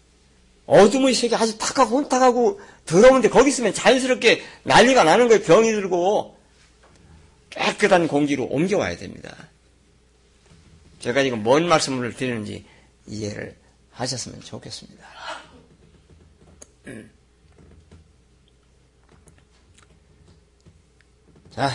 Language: Korean